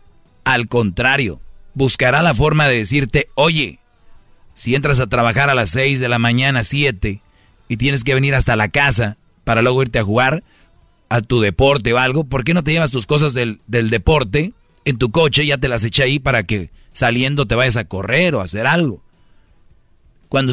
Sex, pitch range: male, 110-140 Hz